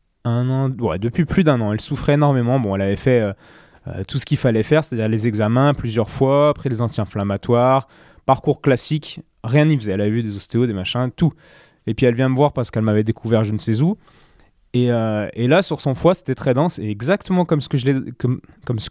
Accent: French